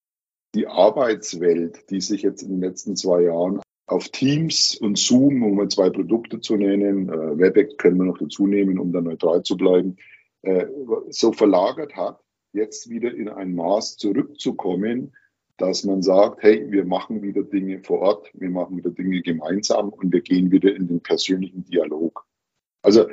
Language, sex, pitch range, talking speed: German, male, 90-125 Hz, 165 wpm